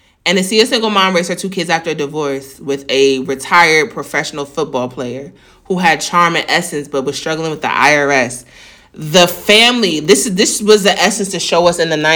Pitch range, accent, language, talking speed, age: 150-195 Hz, American, English, 210 wpm, 30-49